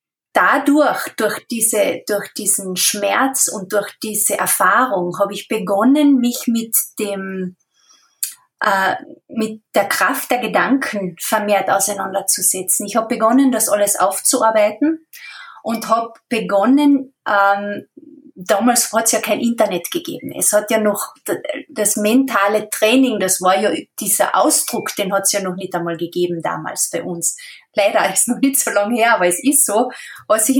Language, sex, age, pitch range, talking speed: German, female, 20-39, 200-260 Hz, 145 wpm